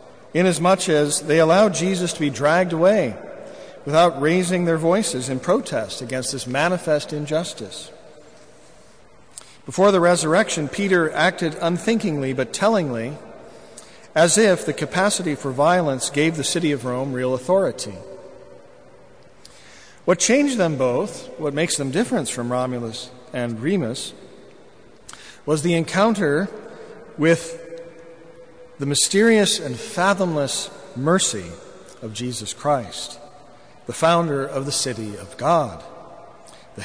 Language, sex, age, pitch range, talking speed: English, male, 50-69, 140-185 Hz, 115 wpm